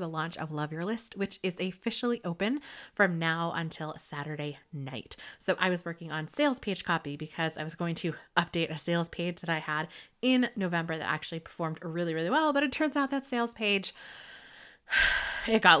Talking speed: 195 wpm